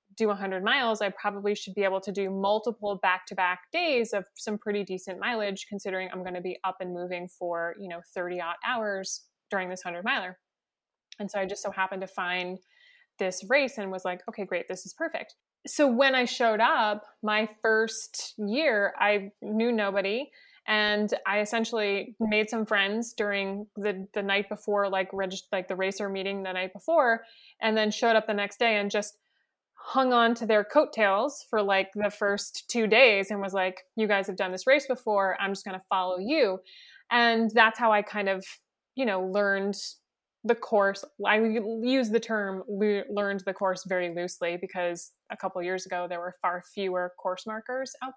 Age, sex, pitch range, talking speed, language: 20-39, female, 190-225 Hz, 195 wpm, English